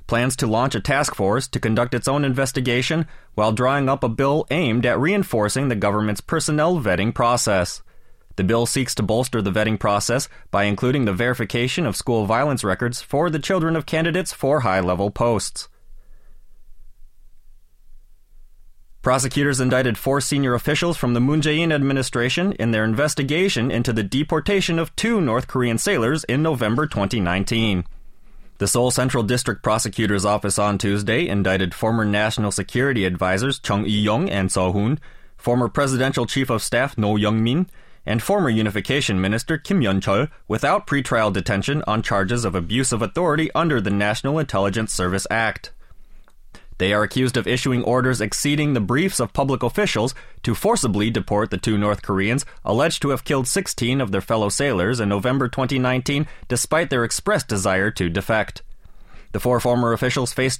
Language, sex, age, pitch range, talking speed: English, male, 30-49, 105-135 Hz, 160 wpm